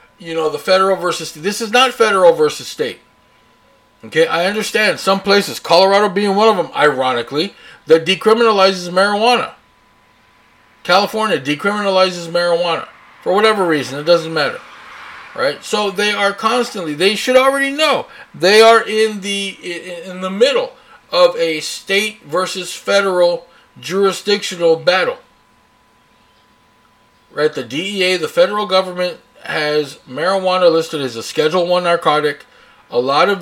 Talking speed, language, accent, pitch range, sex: 130 wpm, English, American, 165-220 Hz, male